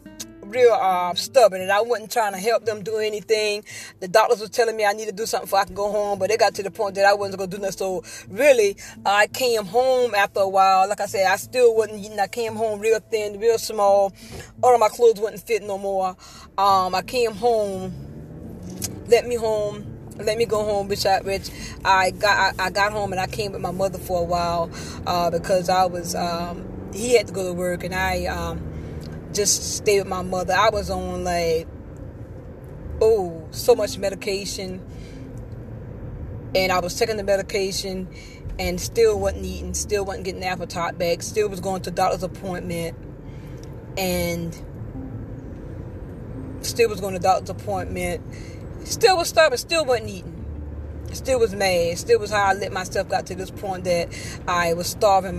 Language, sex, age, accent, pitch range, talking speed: English, female, 20-39, American, 175-220 Hz, 190 wpm